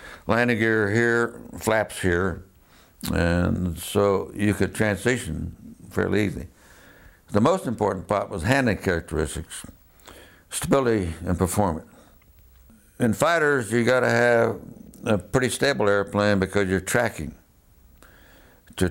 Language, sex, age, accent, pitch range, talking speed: English, male, 60-79, American, 90-115 Hz, 115 wpm